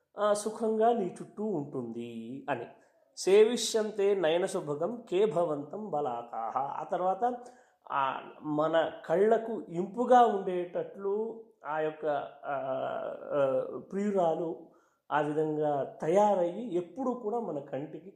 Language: Telugu